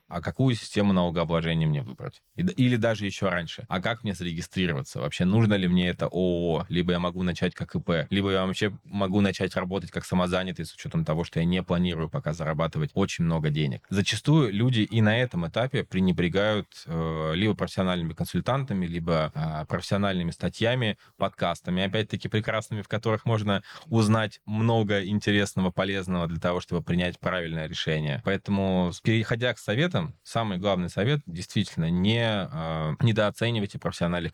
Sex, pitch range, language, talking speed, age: male, 85-105 Hz, Russian, 155 wpm, 20-39